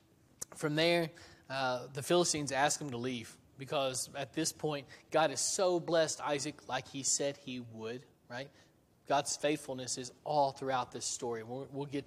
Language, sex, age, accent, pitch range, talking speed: English, male, 20-39, American, 130-155 Hz, 170 wpm